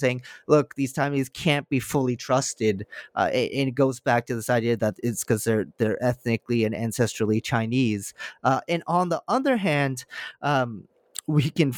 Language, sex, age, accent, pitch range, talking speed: English, male, 30-49, American, 120-150 Hz, 175 wpm